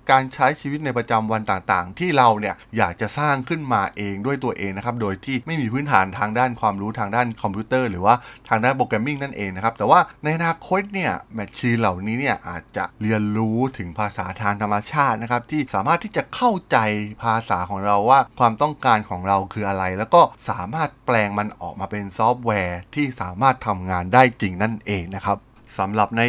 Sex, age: male, 20-39